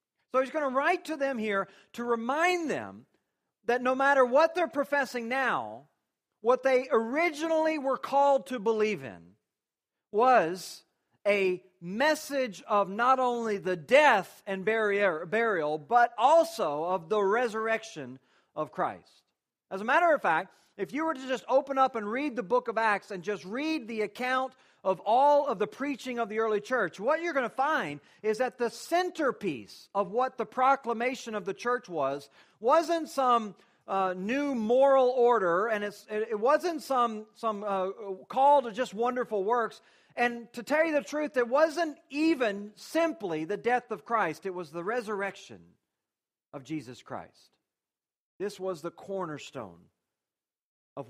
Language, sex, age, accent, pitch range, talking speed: English, male, 40-59, American, 200-270 Hz, 160 wpm